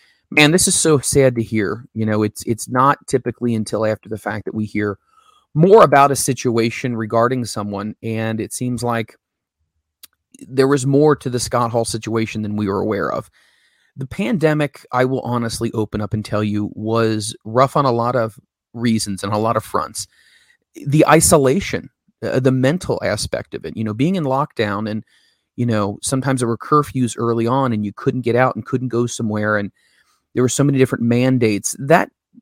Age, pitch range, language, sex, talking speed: 30-49, 110-130 Hz, English, male, 195 wpm